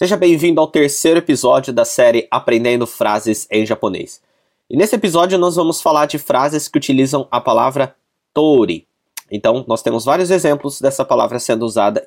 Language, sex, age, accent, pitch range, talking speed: Portuguese, male, 20-39, Brazilian, 120-175 Hz, 165 wpm